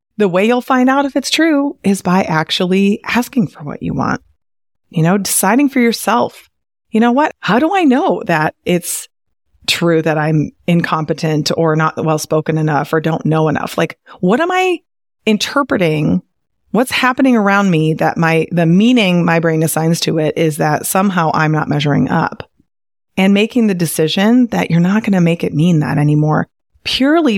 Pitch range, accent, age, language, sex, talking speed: 165-250 Hz, American, 30-49, English, female, 180 wpm